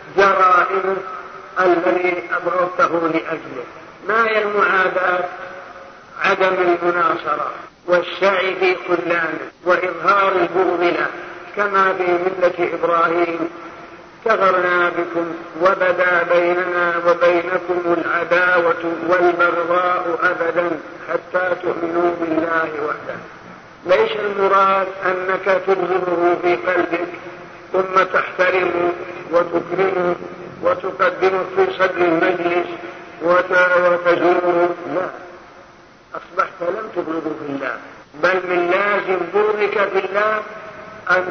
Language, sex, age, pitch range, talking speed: Arabic, male, 50-69, 175-190 Hz, 80 wpm